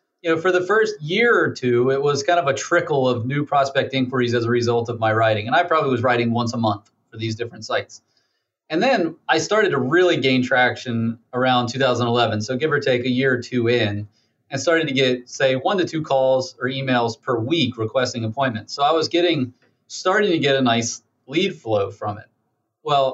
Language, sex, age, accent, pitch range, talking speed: English, male, 30-49, American, 120-155 Hz, 220 wpm